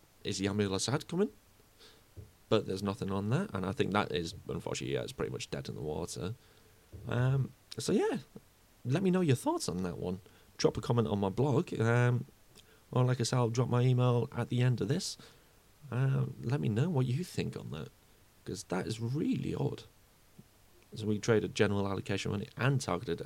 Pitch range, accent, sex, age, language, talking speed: 100-120 Hz, British, male, 30-49, English, 195 wpm